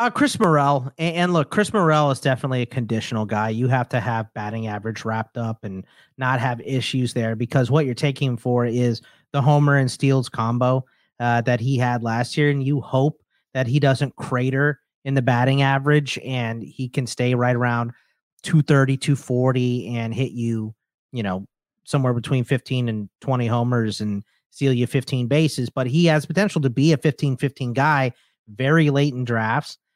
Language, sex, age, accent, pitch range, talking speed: English, male, 30-49, American, 120-150 Hz, 185 wpm